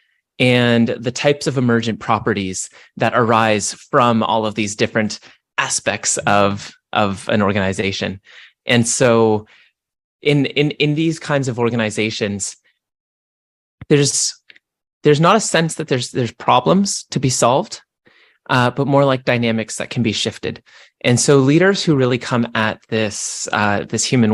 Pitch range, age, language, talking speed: 110-145 Hz, 30-49, English, 145 wpm